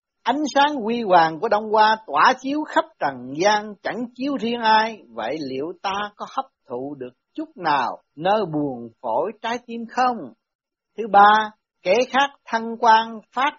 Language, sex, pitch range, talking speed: Vietnamese, male, 180-265 Hz, 170 wpm